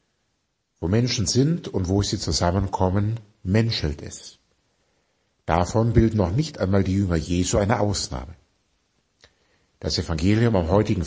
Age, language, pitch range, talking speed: 60-79, German, 85-115 Hz, 120 wpm